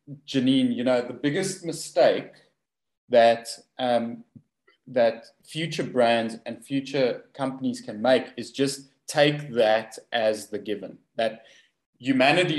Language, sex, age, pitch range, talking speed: English, male, 20-39, 115-140 Hz, 120 wpm